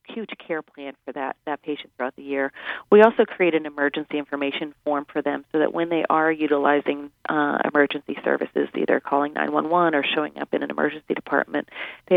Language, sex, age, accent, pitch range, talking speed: English, female, 40-59, American, 145-155 Hz, 190 wpm